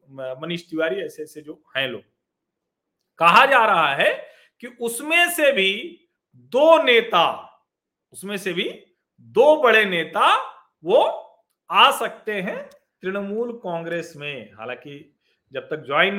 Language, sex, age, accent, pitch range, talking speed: Hindi, male, 40-59, native, 155-195 Hz, 125 wpm